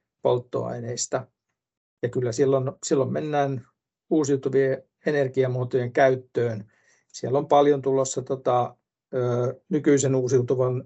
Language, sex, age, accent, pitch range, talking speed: Finnish, male, 60-79, native, 120-135 Hz, 95 wpm